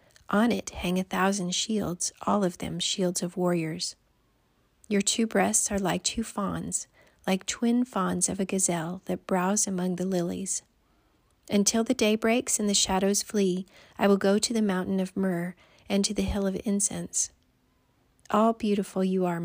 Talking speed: 175 wpm